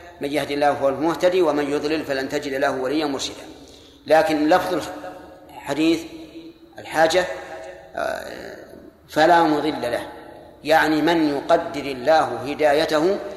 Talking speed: 110 wpm